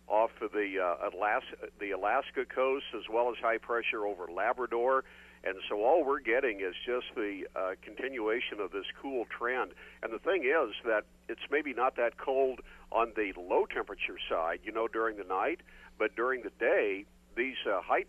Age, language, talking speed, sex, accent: 50-69, English, 180 wpm, male, American